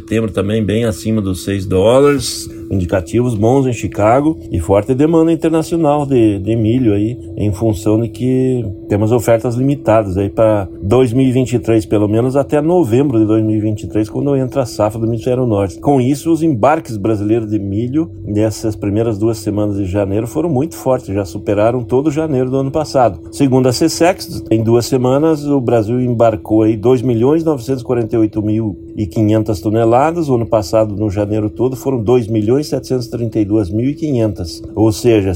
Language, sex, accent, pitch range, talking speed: Portuguese, male, Brazilian, 105-130 Hz, 155 wpm